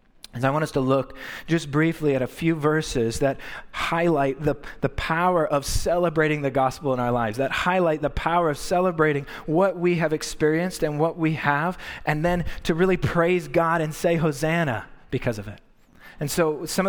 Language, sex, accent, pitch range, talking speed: English, male, American, 140-170 Hz, 190 wpm